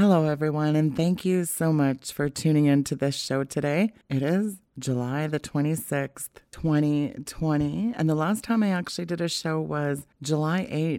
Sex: female